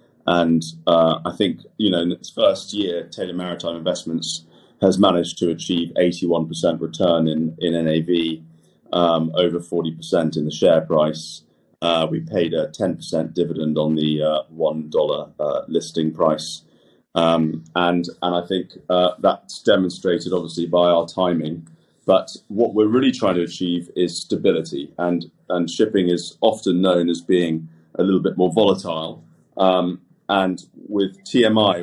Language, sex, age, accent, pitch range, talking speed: English, male, 30-49, British, 80-90 Hz, 150 wpm